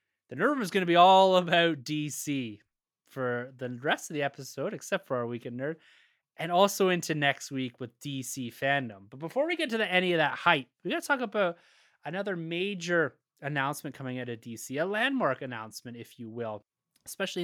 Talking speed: 195 wpm